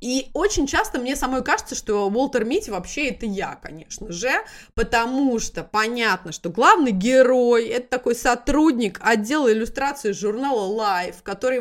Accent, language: native, Russian